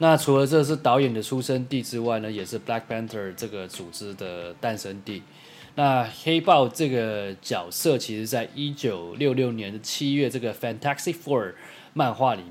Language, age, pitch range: Chinese, 20-39, 110-140 Hz